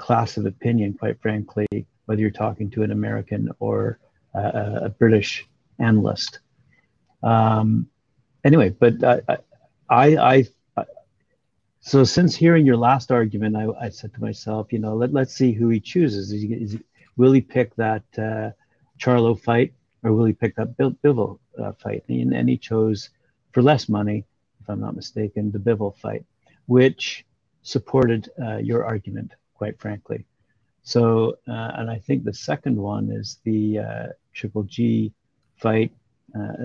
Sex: male